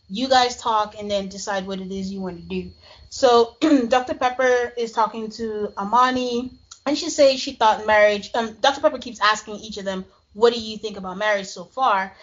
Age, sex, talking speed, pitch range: 30-49, female, 205 wpm, 200-235 Hz